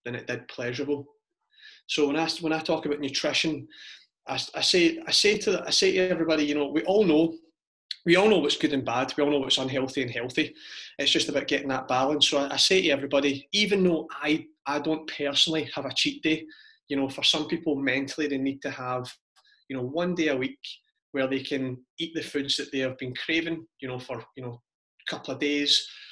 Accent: British